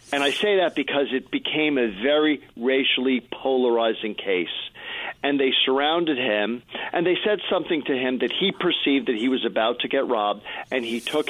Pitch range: 120-155 Hz